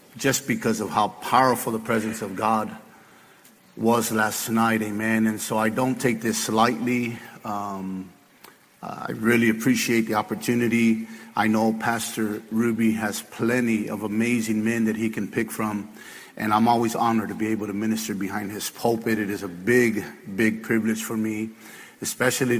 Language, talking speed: English, 160 wpm